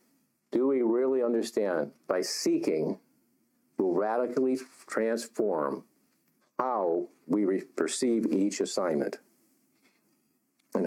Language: English